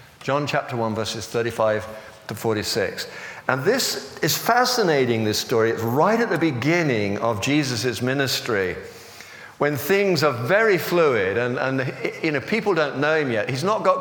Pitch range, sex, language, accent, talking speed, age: 130-175 Hz, male, English, British, 155 wpm, 50-69